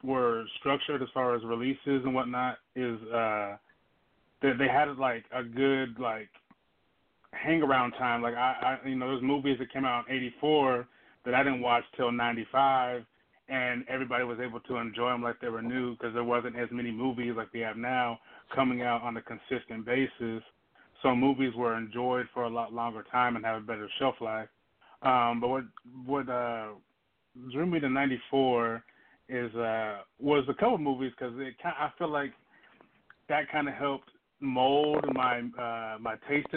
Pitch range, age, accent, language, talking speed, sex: 120-135 Hz, 20-39, American, English, 180 wpm, male